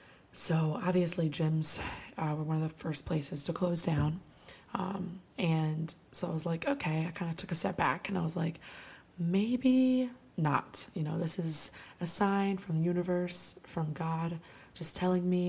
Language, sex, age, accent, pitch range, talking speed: English, female, 20-39, American, 160-180 Hz, 180 wpm